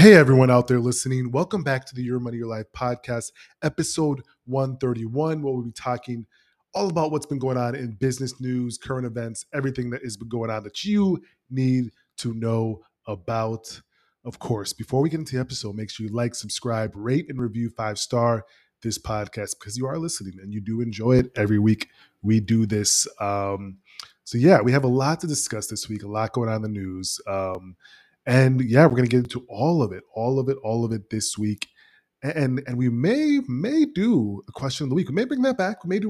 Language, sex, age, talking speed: English, male, 20-39, 220 wpm